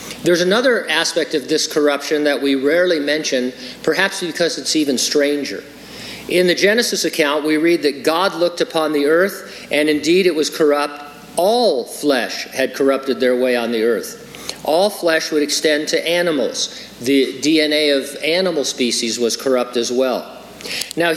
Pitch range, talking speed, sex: 135-165 Hz, 160 wpm, male